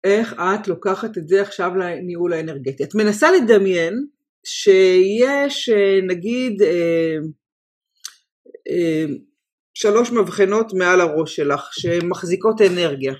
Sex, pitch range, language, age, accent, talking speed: female, 175-250 Hz, Hebrew, 40-59, native, 100 wpm